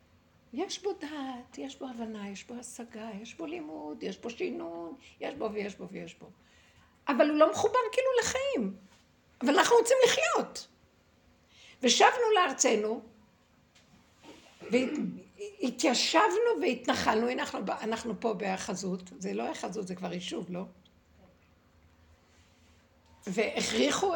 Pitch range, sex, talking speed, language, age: 180-240 Hz, female, 115 wpm, Hebrew, 60-79